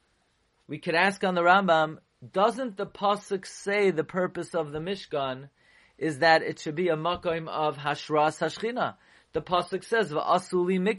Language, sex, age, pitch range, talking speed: English, male, 30-49, 160-210 Hz, 135 wpm